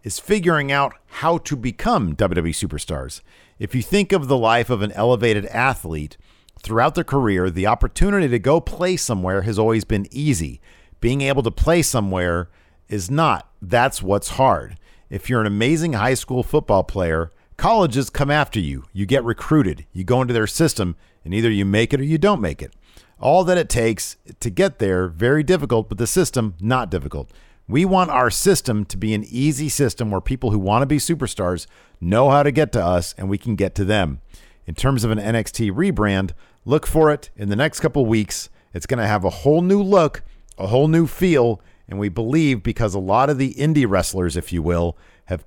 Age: 50-69